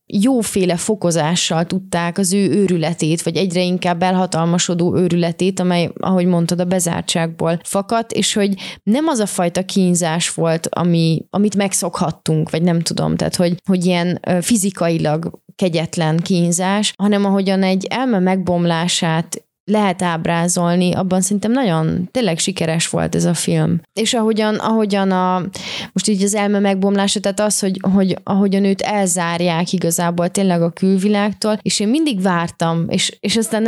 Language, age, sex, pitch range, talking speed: Hungarian, 20-39, female, 175-205 Hz, 145 wpm